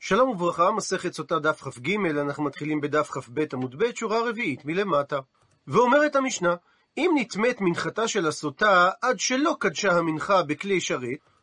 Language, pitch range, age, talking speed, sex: Hebrew, 170-235 Hz, 40-59, 145 wpm, male